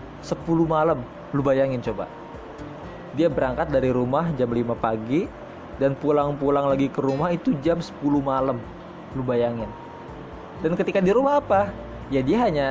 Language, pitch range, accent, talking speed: Indonesian, 115-165 Hz, native, 145 wpm